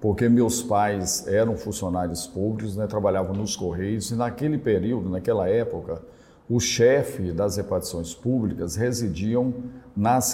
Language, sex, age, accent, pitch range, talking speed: Portuguese, male, 50-69, Brazilian, 95-120 Hz, 130 wpm